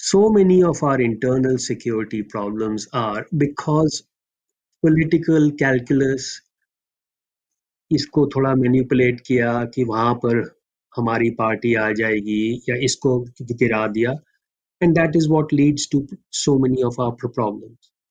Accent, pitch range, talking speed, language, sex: native, 125-180 Hz, 125 wpm, Hindi, male